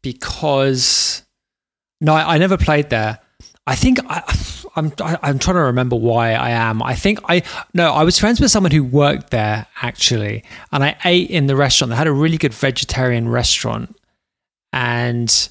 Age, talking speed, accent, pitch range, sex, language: 20-39, 175 wpm, British, 120-155 Hz, male, English